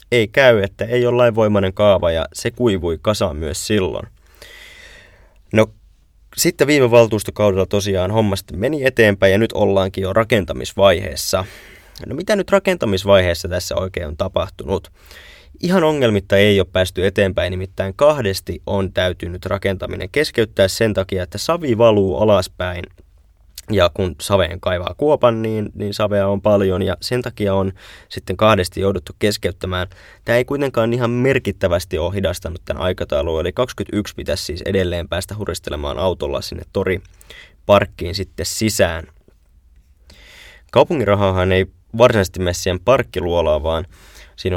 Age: 20-39